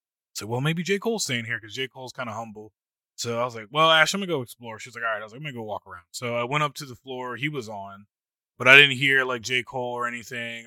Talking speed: 325 wpm